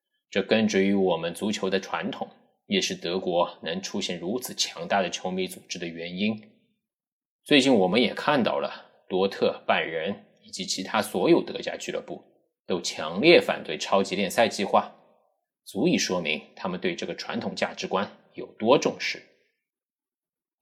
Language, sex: Chinese, male